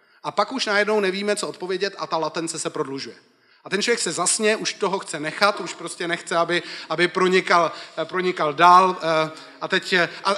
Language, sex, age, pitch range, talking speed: Czech, male, 30-49, 150-190 Hz, 180 wpm